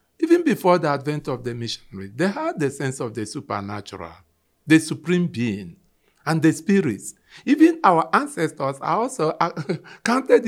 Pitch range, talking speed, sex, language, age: 115-160 Hz, 150 wpm, male, English, 50-69